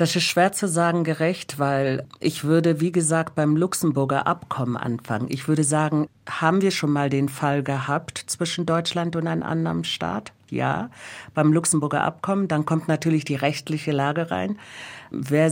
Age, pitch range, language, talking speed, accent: 50-69, 130-160 Hz, German, 165 wpm, German